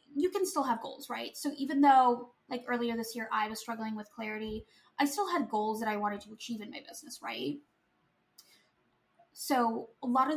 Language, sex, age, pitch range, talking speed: English, female, 10-29, 220-285 Hz, 205 wpm